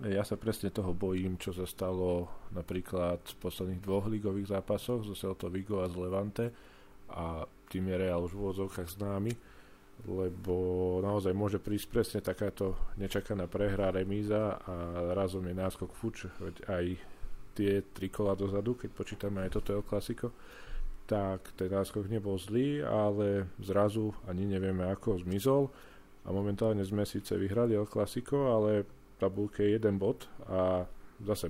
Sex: male